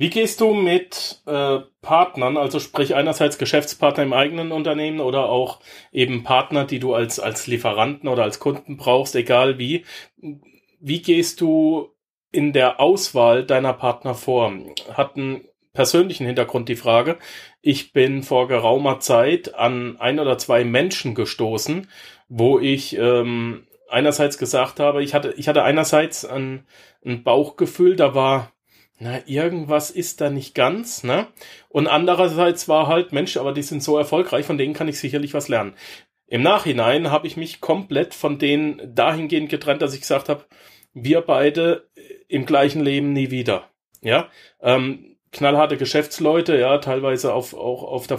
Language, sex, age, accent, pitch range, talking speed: German, male, 40-59, German, 130-155 Hz, 155 wpm